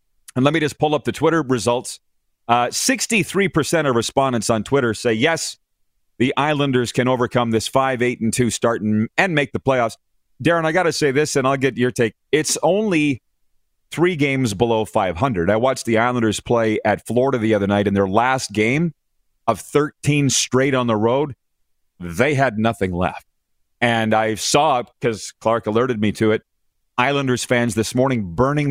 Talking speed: 180 wpm